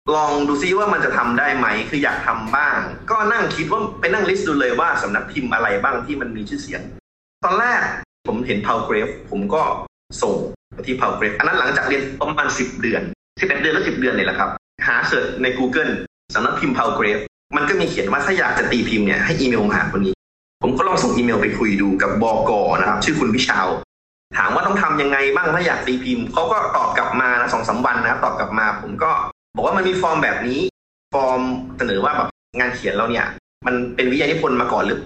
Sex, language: male, Thai